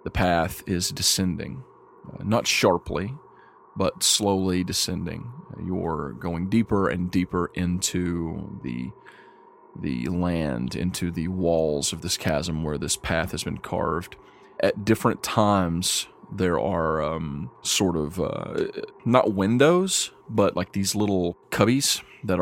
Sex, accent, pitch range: male, American, 85-100 Hz